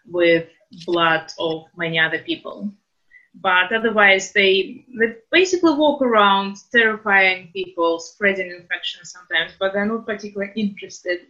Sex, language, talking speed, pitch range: female, English, 120 wpm, 165-200 Hz